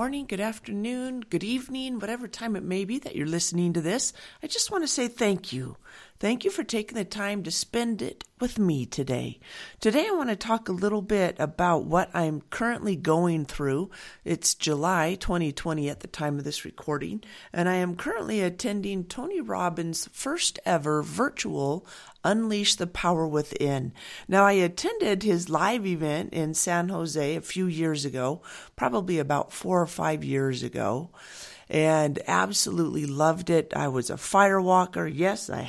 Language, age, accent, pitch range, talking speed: English, 50-69, American, 155-205 Hz, 175 wpm